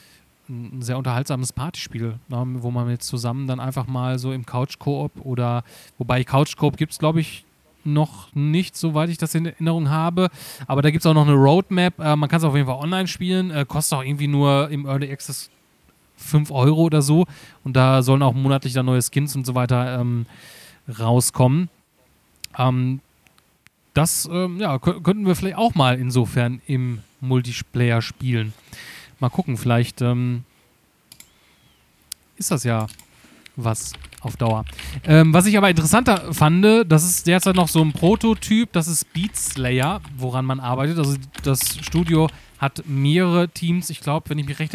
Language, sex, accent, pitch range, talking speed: German, male, German, 130-165 Hz, 170 wpm